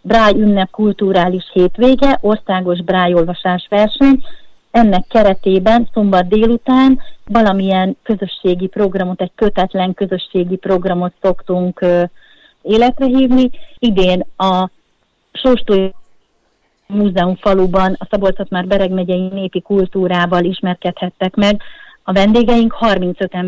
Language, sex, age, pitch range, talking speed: Hungarian, female, 30-49, 185-220 Hz, 100 wpm